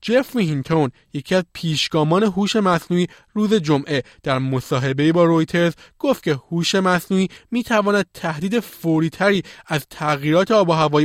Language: Persian